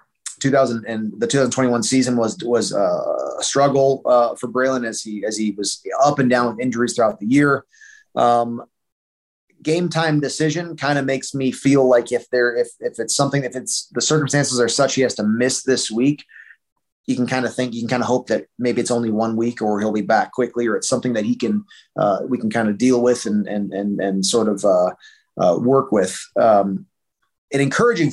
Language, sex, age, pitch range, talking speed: English, male, 30-49, 120-140 Hz, 215 wpm